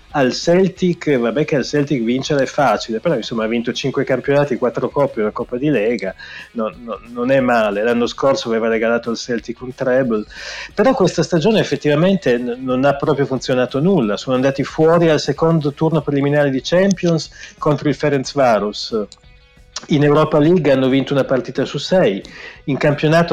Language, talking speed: Italian, 170 wpm